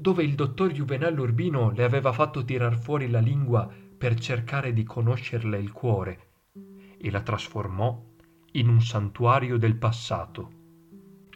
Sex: male